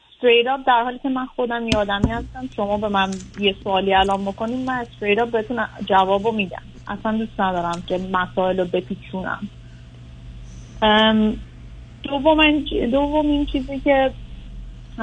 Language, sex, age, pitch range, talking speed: Persian, female, 30-49, 185-230 Hz, 125 wpm